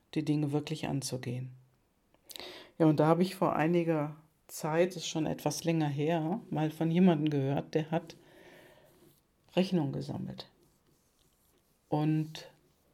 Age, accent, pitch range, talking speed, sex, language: 50-69, German, 150-175 Hz, 125 wpm, female, German